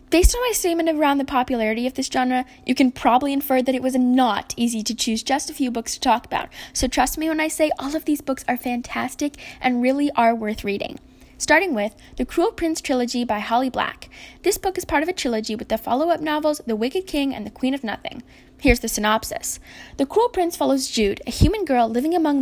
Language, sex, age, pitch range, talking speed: English, female, 10-29, 235-300 Hz, 230 wpm